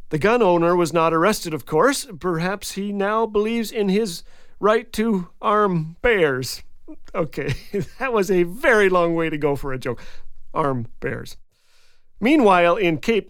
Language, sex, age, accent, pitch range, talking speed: English, male, 40-59, American, 165-230 Hz, 160 wpm